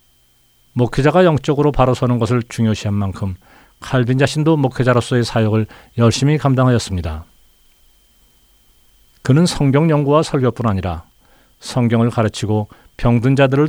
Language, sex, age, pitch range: Korean, male, 40-59, 95-130 Hz